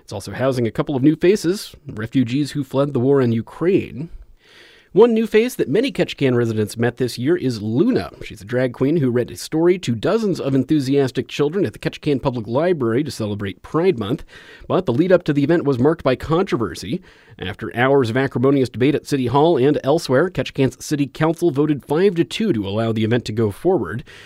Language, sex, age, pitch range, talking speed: English, male, 30-49, 115-170 Hz, 205 wpm